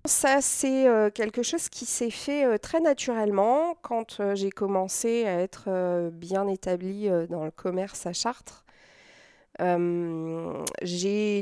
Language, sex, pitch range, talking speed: French, female, 185-230 Hz, 140 wpm